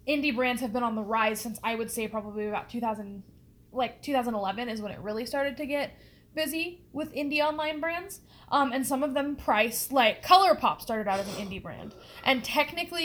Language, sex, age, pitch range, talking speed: English, female, 10-29, 220-290 Hz, 200 wpm